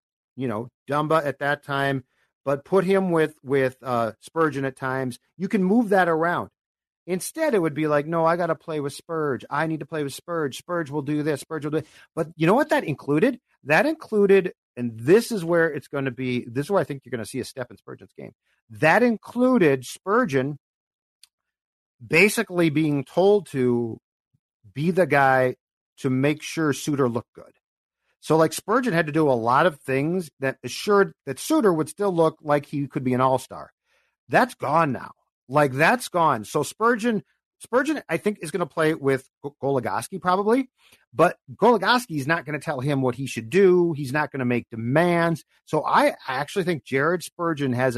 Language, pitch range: English, 135-175 Hz